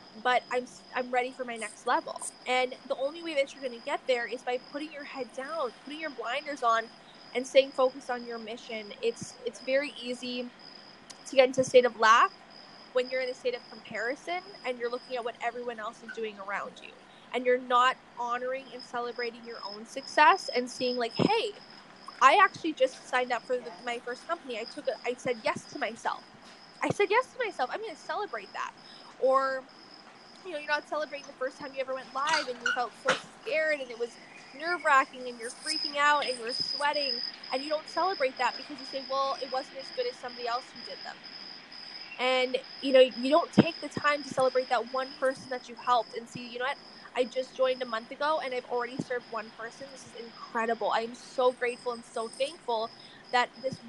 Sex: female